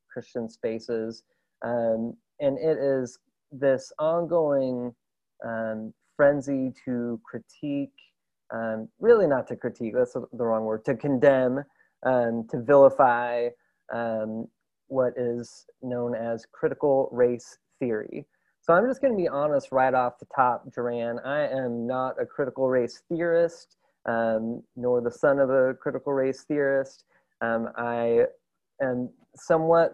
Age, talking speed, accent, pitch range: 30-49, 135 wpm, American, 115-140 Hz